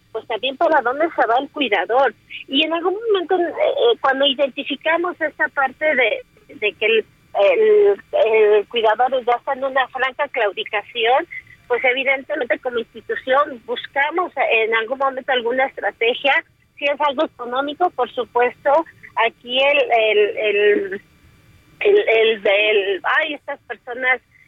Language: Spanish